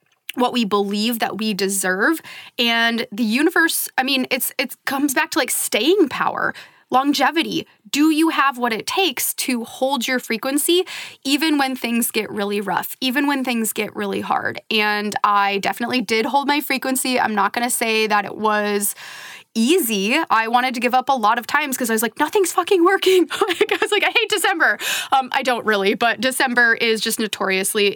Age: 20-39